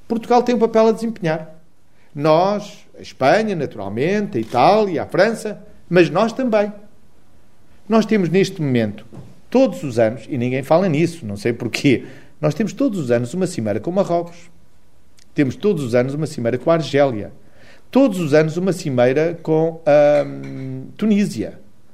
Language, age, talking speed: Portuguese, 40-59, 160 wpm